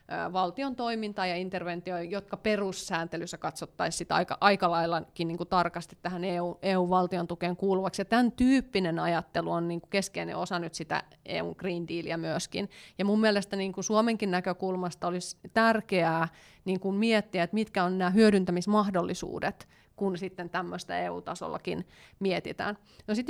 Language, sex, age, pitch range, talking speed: Finnish, female, 30-49, 175-210 Hz, 135 wpm